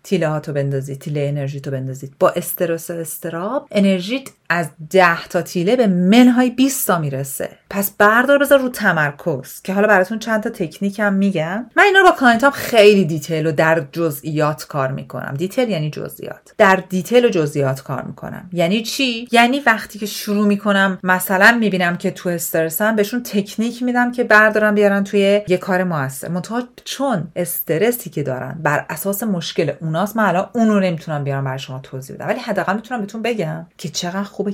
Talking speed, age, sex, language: 180 wpm, 40-59, female, Persian